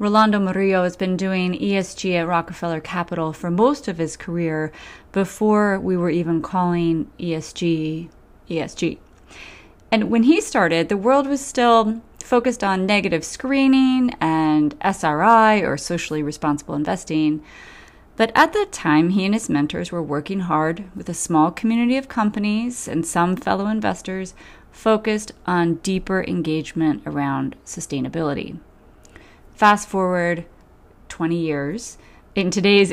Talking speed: 130 wpm